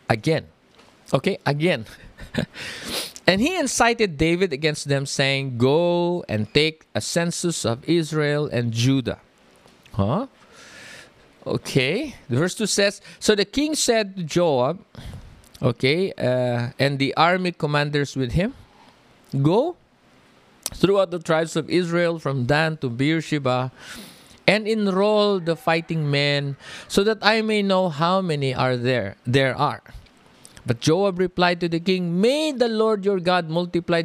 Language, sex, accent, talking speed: English, male, Filipino, 135 wpm